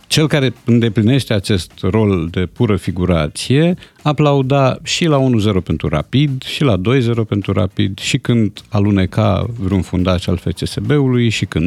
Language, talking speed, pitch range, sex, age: Romanian, 145 wpm, 100-145 Hz, male, 50-69